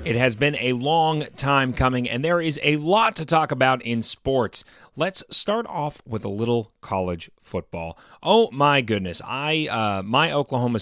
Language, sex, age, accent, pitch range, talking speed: English, male, 30-49, American, 115-150 Hz, 175 wpm